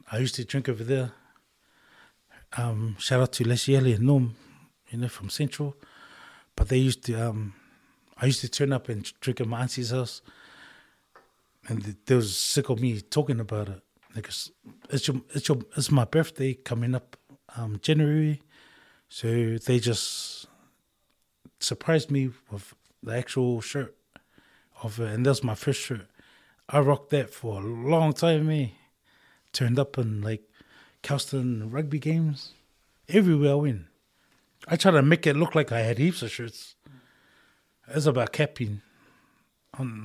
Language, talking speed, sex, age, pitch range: English, 155 wpm, male, 20-39, 115-145 Hz